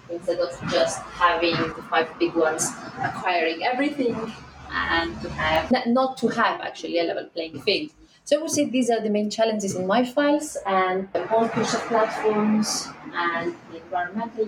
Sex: female